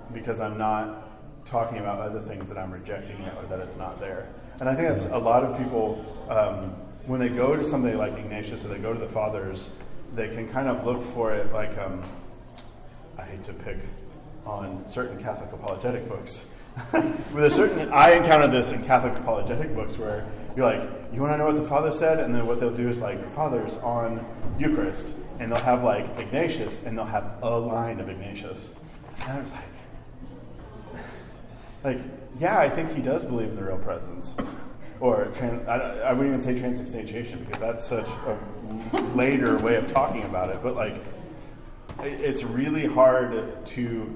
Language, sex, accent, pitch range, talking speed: English, male, American, 110-130 Hz, 190 wpm